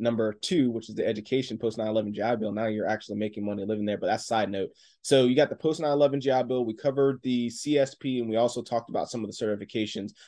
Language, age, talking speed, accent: English, 20-39, 245 wpm, American